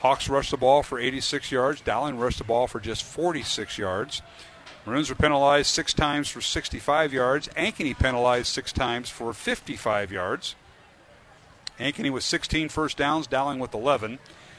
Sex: male